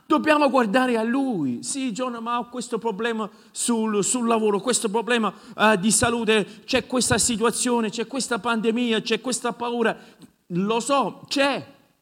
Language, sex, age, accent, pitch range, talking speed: Italian, male, 50-69, native, 175-235 Hz, 150 wpm